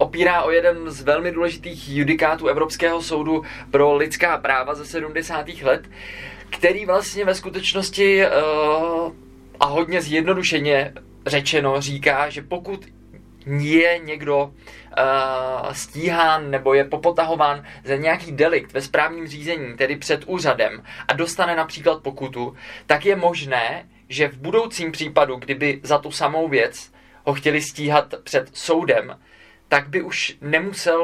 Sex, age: male, 20-39